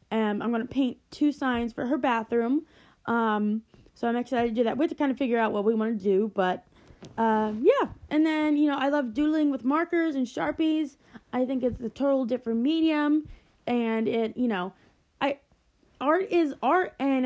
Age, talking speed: 20-39, 205 wpm